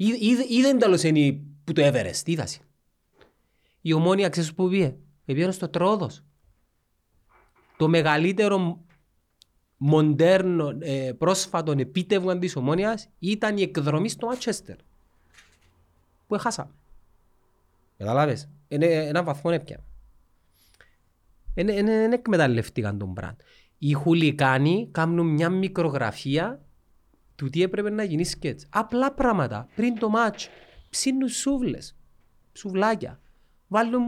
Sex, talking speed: male, 105 wpm